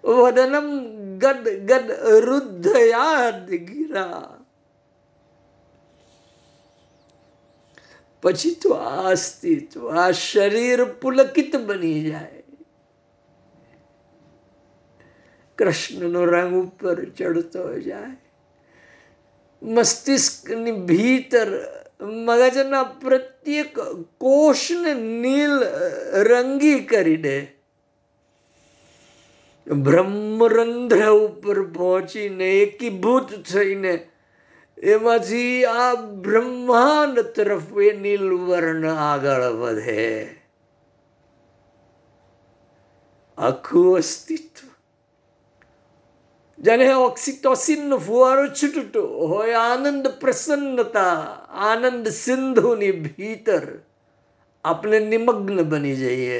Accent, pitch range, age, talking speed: native, 160-270 Hz, 50-69, 55 wpm